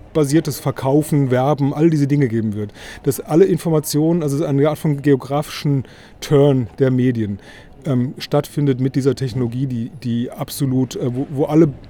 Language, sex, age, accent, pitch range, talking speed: German, male, 30-49, German, 125-145 Hz, 155 wpm